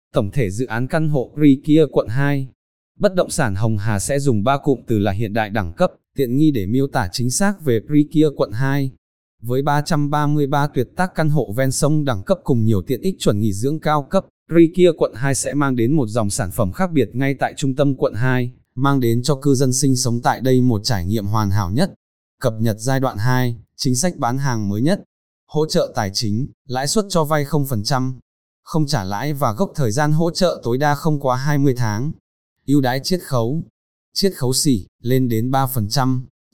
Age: 20-39